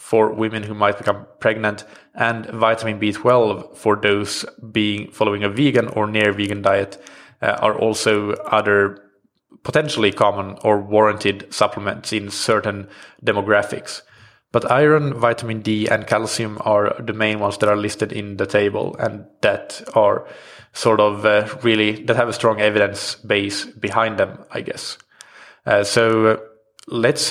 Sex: male